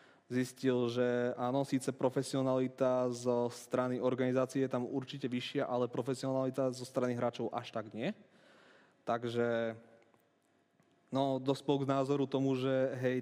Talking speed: 125 wpm